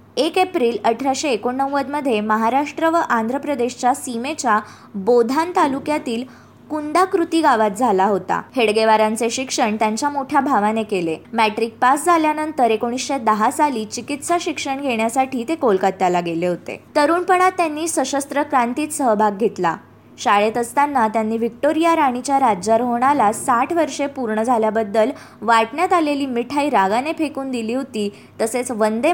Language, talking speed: Marathi, 120 wpm